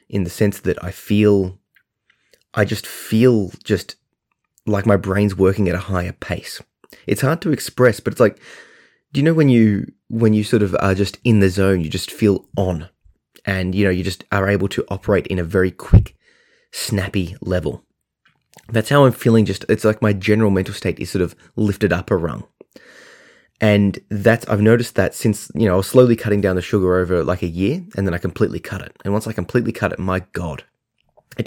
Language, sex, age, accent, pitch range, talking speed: English, male, 20-39, Australian, 95-110 Hz, 210 wpm